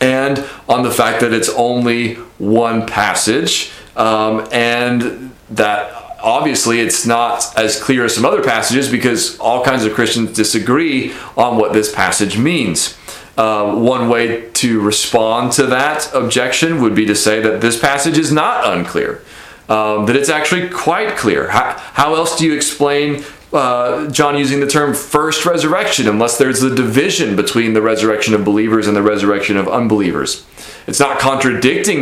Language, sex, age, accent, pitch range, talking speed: English, male, 30-49, American, 110-140 Hz, 160 wpm